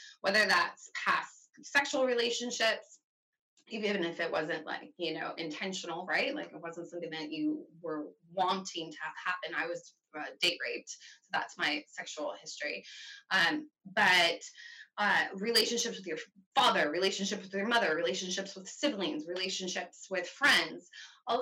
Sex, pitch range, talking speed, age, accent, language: female, 180-260 Hz, 150 wpm, 20-39, American, English